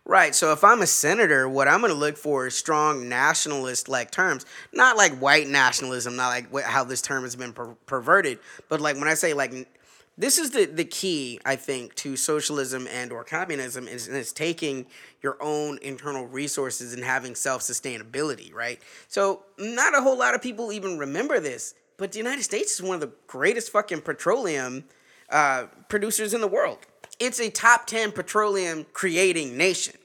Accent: American